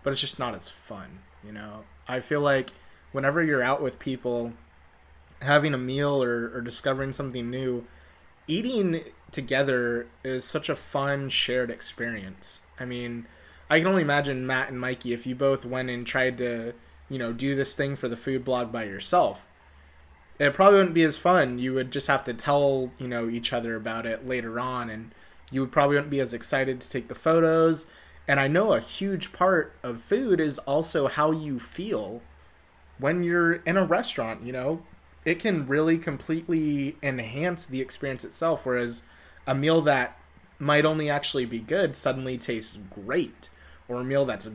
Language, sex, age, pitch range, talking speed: English, male, 20-39, 115-145 Hz, 180 wpm